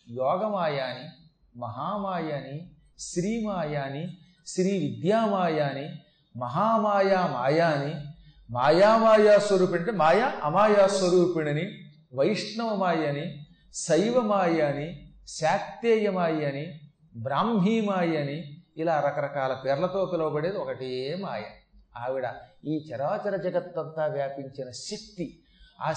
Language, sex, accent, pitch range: Telugu, male, native, 150-205 Hz